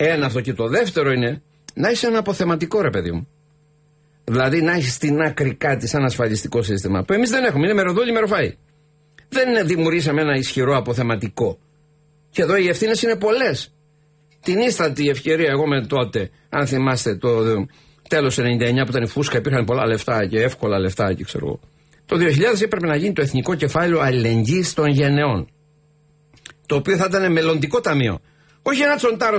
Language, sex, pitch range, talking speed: English, male, 130-175 Hz, 170 wpm